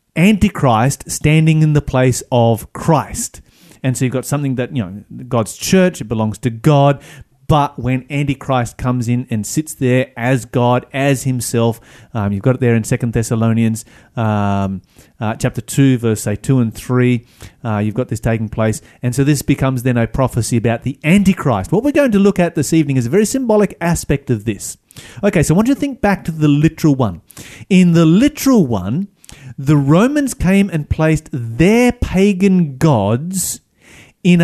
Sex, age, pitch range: male, 30-49, 120-165 Hz